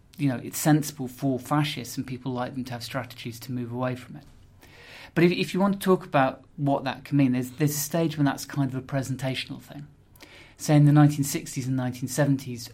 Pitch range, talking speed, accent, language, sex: 125-145 Hz, 220 wpm, British, English, male